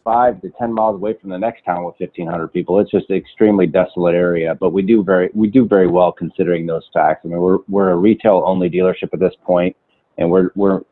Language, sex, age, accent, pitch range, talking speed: English, male, 30-49, American, 85-95 Hz, 230 wpm